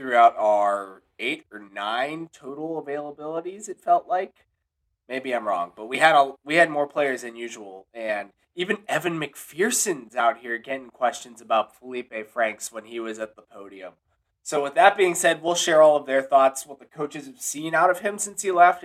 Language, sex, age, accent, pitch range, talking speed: English, male, 20-39, American, 110-160 Hz, 195 wpm